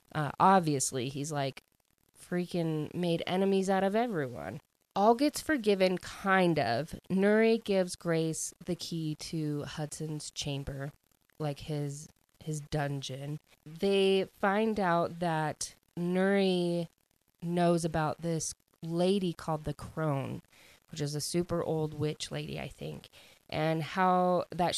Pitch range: 150-180 Hz